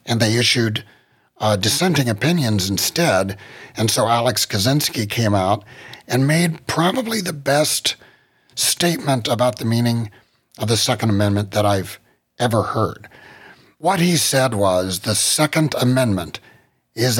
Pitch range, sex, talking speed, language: 105-140 Hz, male, 135 wpm, English